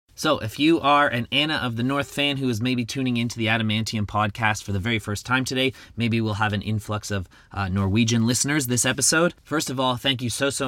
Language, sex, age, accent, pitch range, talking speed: English, male, 30-49, American, 105-130 Hz, 235 wpm